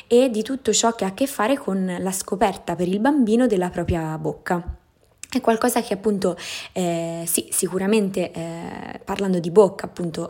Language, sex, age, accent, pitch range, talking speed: Italian, female, 20-39, native, 165-210 Hz, 175 wpm